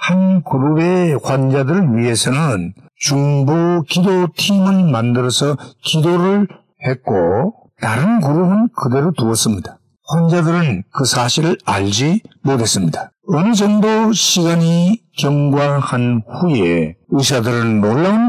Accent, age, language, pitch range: native, 50-69, Korean, 130-185 Hz